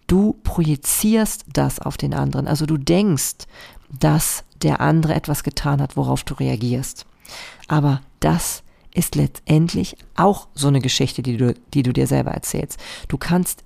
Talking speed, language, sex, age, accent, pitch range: 155 wpm, German, female, 40-59, German, 135-165 Hz